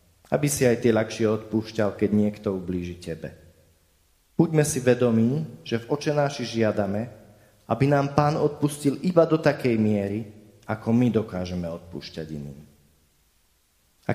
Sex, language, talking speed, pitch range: male, Slovak, 135 wpm, 90-120 Hz